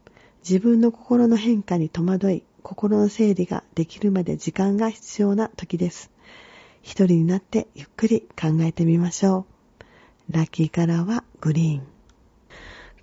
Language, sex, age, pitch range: Japanese, female, 40-59, 175-220 Hz